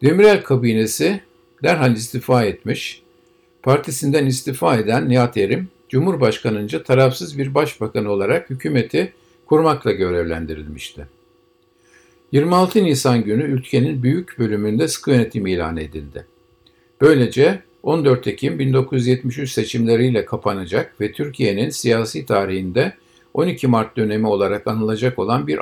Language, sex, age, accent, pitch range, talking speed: Turkish, male, 50-69, native, 105-140 Hz, 105 wpm